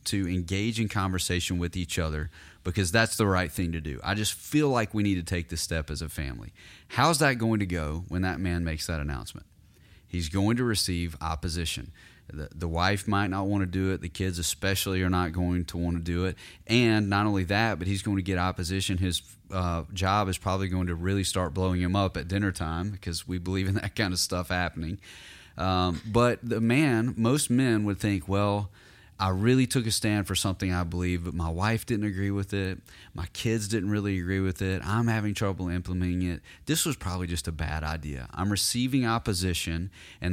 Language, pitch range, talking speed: English, 85-105 Hz, 215 wpm